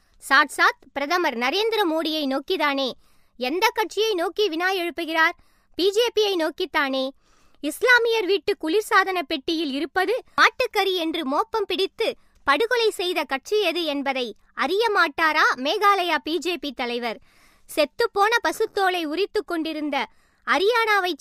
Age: 20-39